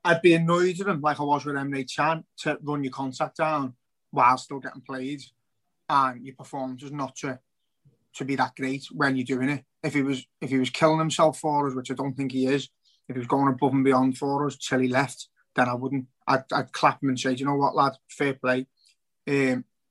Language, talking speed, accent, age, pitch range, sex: English, 230 wpm, British, 30-49, 130-145 Hz, male